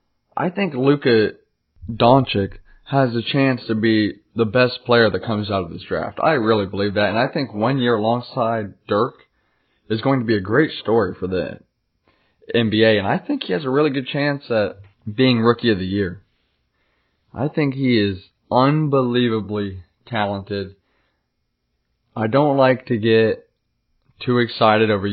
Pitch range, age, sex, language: 100-125 Hz, 20-39, male, English